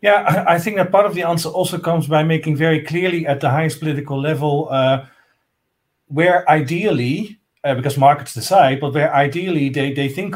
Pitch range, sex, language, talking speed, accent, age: 140-170 Hz, male, English, 185 wpm, Dutch, 40-59